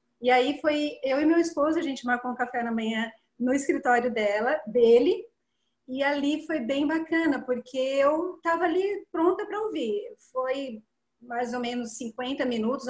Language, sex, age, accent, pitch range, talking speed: English, female, 30-49, Brazilian, 245-320 Hz, 170 wpm